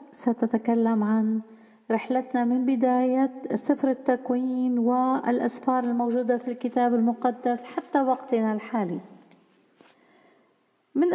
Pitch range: 230-285 Hz